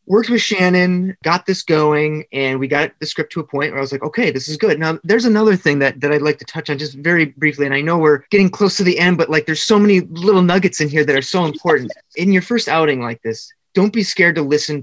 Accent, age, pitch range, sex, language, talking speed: American, 30-49, 140-185 Hz, male, English, 280 wpm